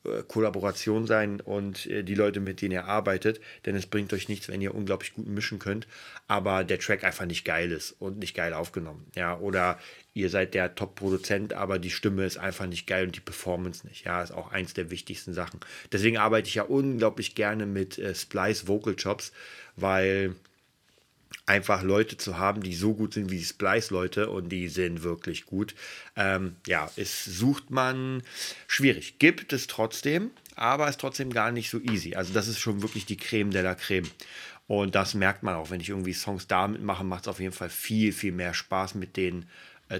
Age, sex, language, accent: 30-49, male, German, German